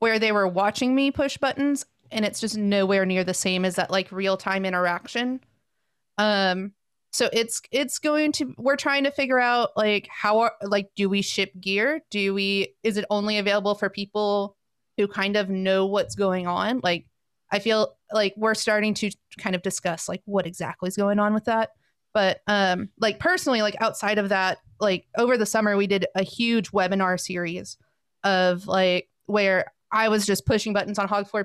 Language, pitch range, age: English, 195-225 Hz, 30-49